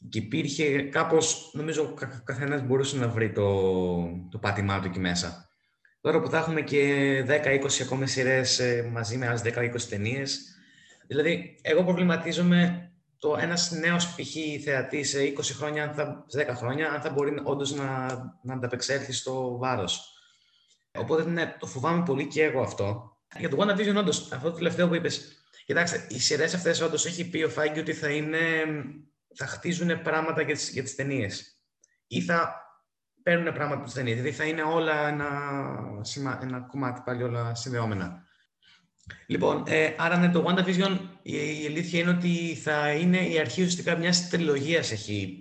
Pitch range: 125-160 Hz